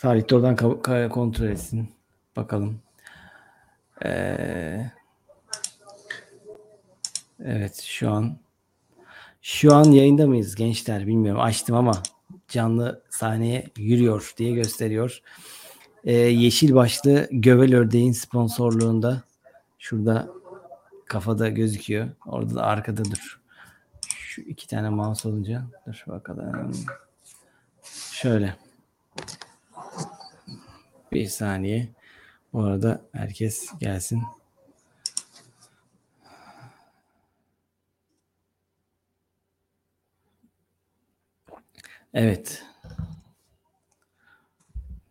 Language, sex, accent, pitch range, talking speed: Turkish, male, native, 105-125 Hz, 65 wpm